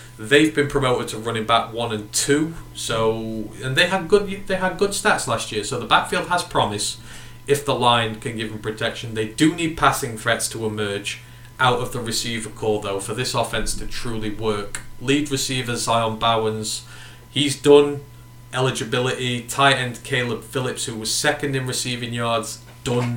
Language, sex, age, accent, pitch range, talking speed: English, male, 30-49, British, 110-135 Hz, 180 wpm